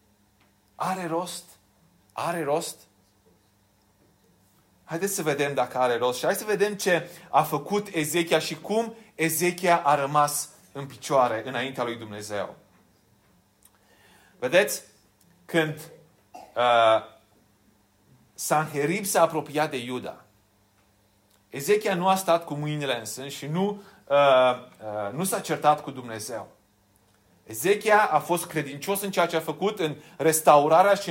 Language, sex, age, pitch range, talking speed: Romanian, male, 30-49, 115-180 Hz, 125 wpm